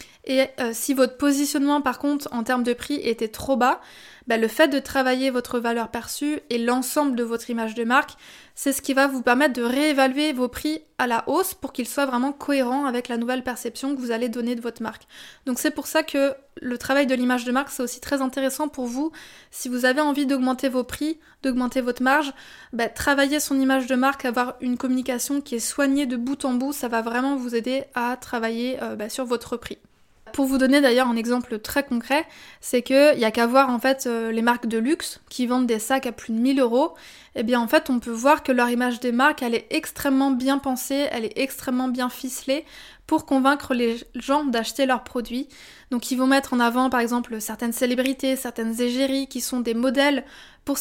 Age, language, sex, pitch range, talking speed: 20-39, French, female, 245-275 Hz, 225 wpm